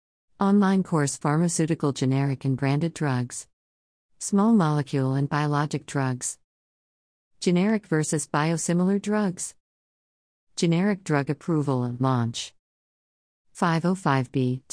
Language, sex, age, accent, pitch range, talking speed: English, female, 50-69, American, 130-160 Hz, 90 wpm